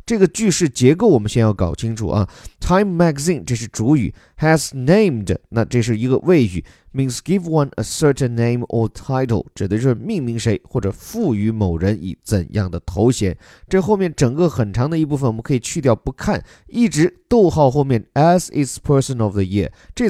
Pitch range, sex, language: 110-175 Hz, male, Chinese